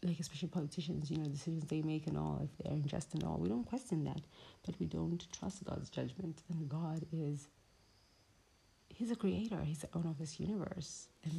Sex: female